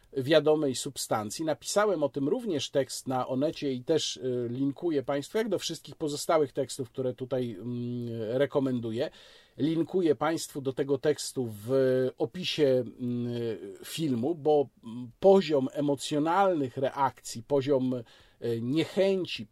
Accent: native